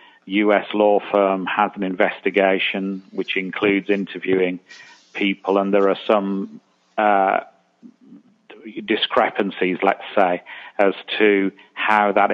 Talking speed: 105 wpm